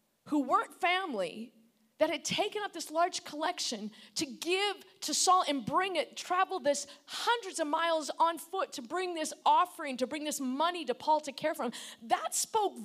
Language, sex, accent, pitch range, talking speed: English, female, American, 245-350 Hz, 185 wpm